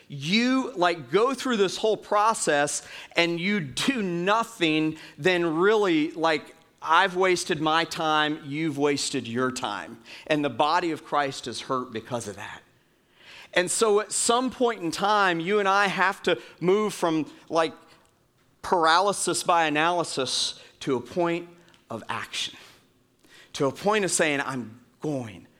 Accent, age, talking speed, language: American, 40-59, 145 wpm, English